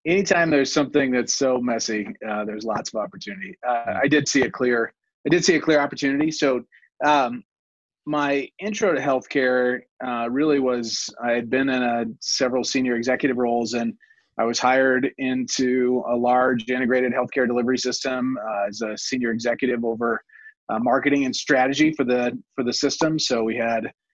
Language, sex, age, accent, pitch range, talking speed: English, male, 30-49, American, 125-145 Hz, 175 wpm